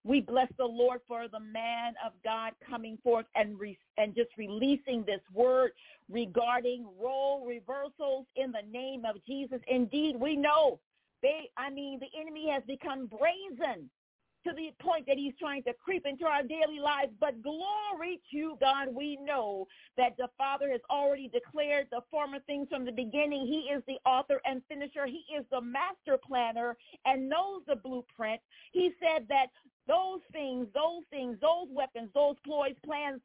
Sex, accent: female, American